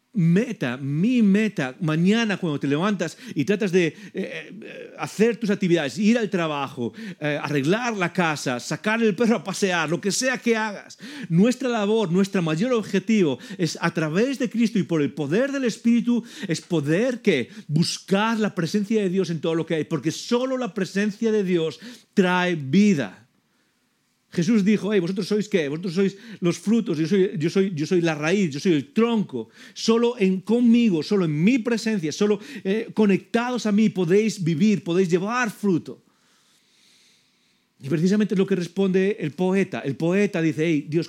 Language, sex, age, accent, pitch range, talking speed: English, male, 40-59, Spanish, 145-210 Hz, 175 wpm